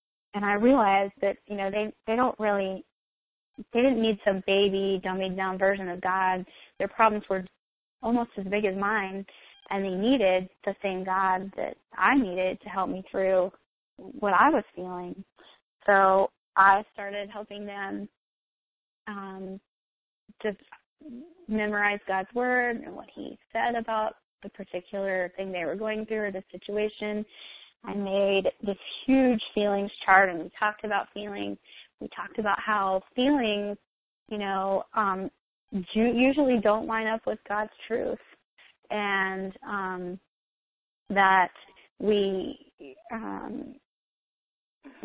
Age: 20-39